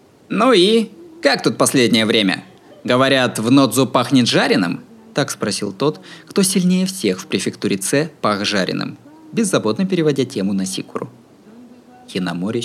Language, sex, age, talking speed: Russian, male, 20-39, 135 wpm